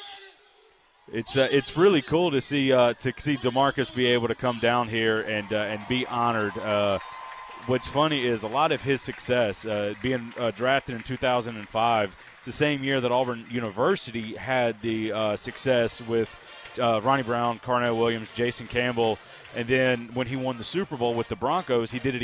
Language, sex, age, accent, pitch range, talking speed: English, male, 30-49, American, 115-140 Hz, 195 wpm